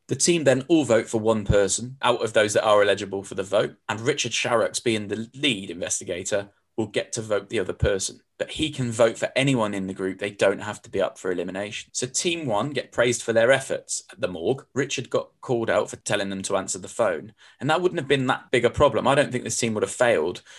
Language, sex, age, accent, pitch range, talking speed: English, male, 20-39, British, 105-135 Hz, 255 wpm